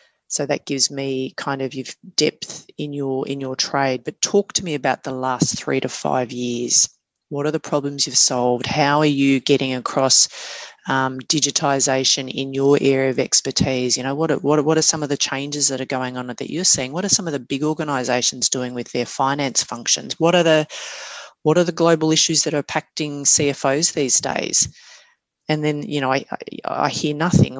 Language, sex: English, female